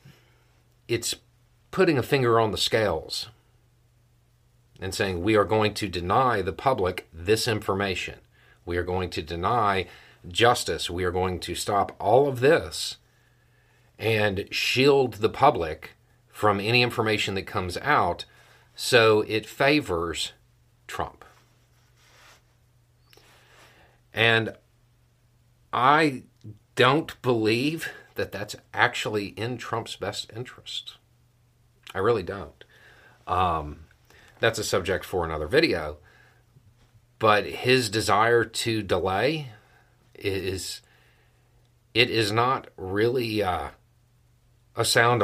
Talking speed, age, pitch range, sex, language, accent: 105 wpm, 40-59, 100-120 Hz, male, English, American